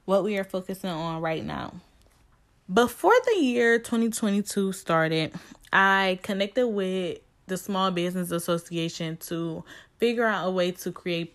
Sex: female